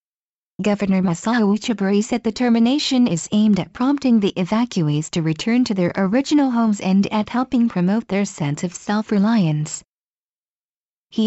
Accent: American